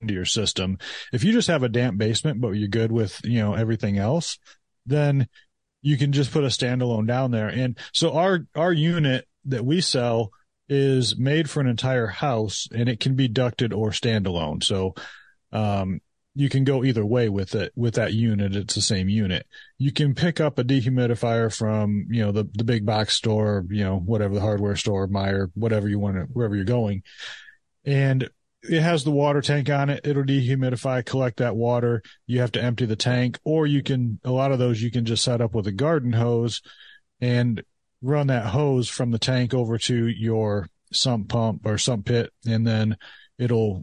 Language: English